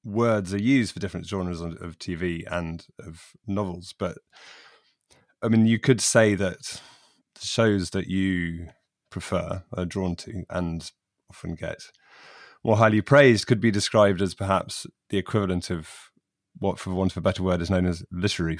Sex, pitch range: male, 90-110 Hz